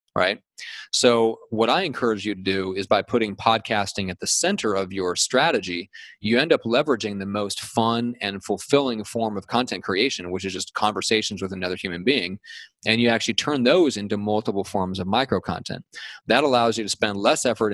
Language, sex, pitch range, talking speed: English, male, 95-120 Hz, 195 wpm